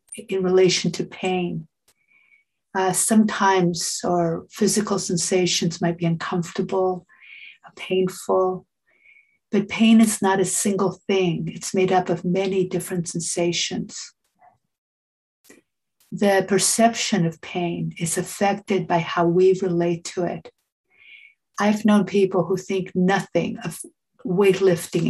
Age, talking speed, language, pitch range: 50-69, 110 wpm, English, 175-205 Hz